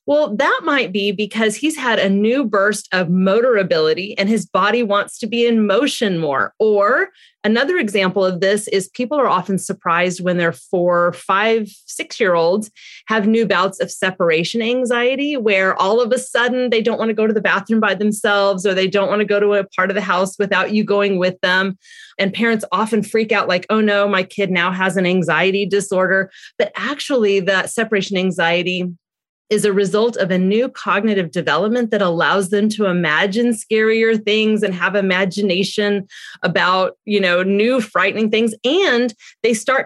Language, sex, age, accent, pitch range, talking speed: English, female, 30-49, American, 185-225 Hz, 185 wpm